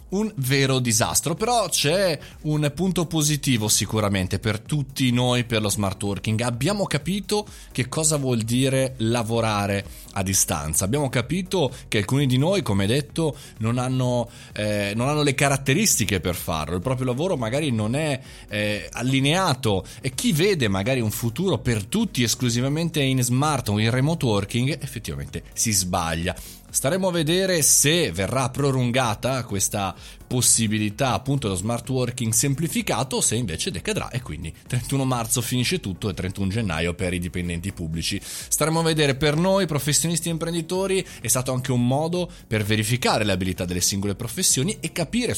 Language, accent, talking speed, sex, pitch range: Italian, native, 155 wpm, male, 105-150 Hz